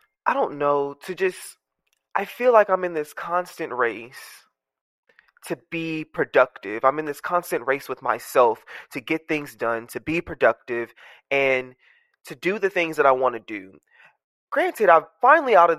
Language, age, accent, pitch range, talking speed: English, 20-39, American, 135-185 Hz, 170 wpm